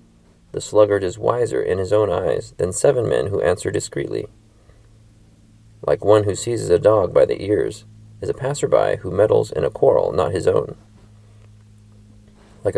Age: 30-49